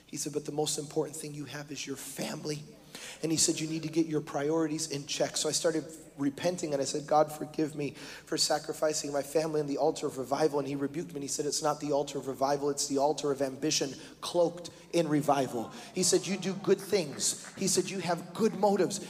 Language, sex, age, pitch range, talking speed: English, male, 30-49, 150-180 Hz, 235 wpm